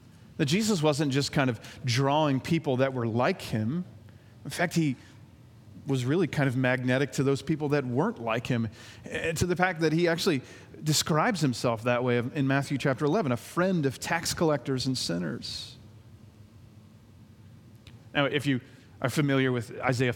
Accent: American